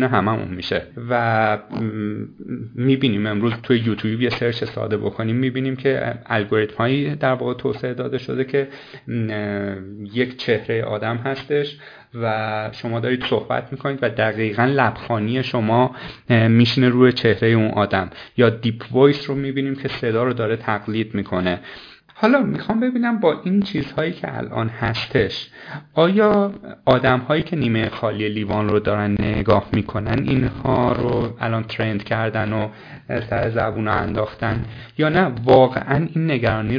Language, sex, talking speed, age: Persian, male, 135 wpm, 30-49